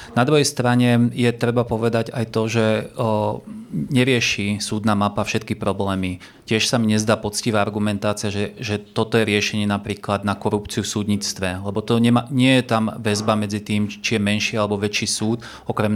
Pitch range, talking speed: 105-120 Hz, 175 wpm